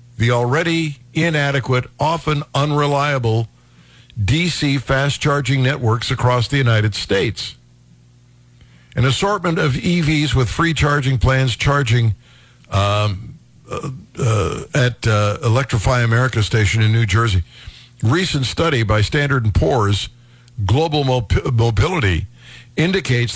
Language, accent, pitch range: English, American, 110-140 Hz